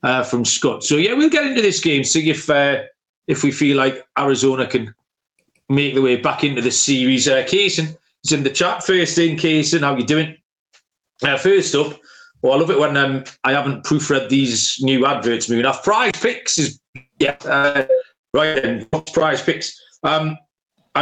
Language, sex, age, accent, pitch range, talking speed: English, male, 40-59, British, 135-165 Hz, 190 wpm